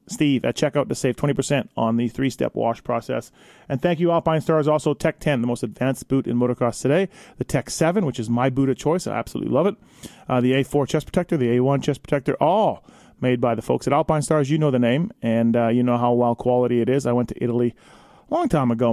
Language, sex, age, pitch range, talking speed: English, male, 30-49, 125-160 Hz, 245 wpm